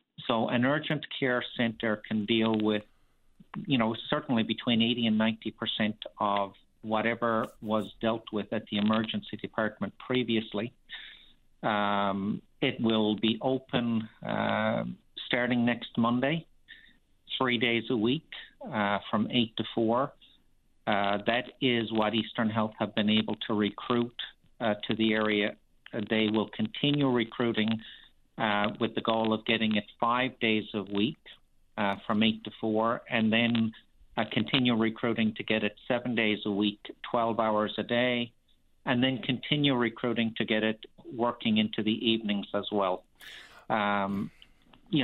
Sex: male